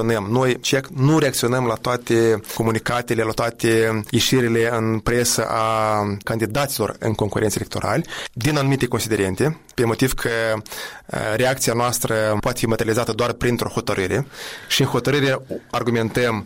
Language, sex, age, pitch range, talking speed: Romanian, male, 20-39, 115-135 Hz, 130 wpm